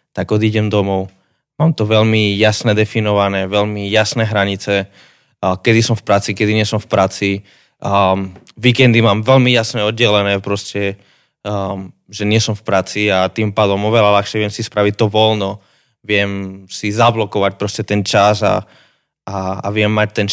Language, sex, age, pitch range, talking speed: Slovak, male, 20-39, 105-130 Hz, 160 wpm